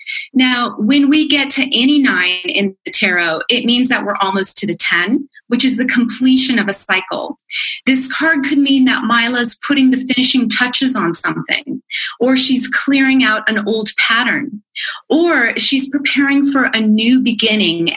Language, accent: English, American